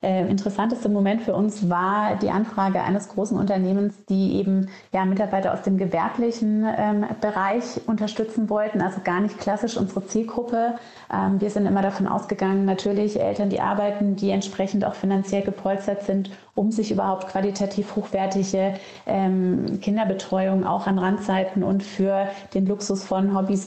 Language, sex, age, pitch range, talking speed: German, female, 30-49, 190-210 Hz, 145 wpm